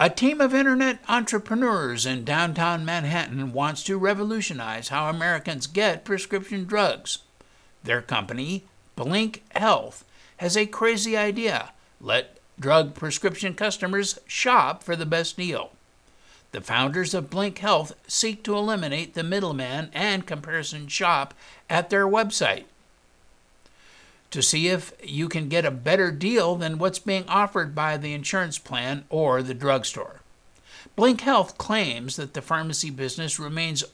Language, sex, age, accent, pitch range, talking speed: English, male, 60-79, American, 150-200 Hz, 135 wpm